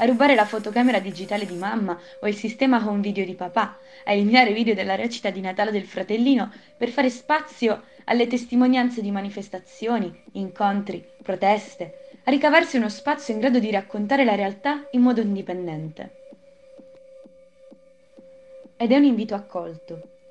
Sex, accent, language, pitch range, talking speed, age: female, native, Italian, 195-265 Hz, 150 wpm, 20-39